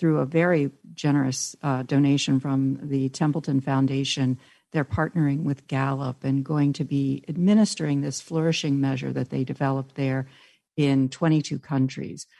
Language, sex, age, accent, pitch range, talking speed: English, female, 50-69, American, 140-170 Hz, 140 wpm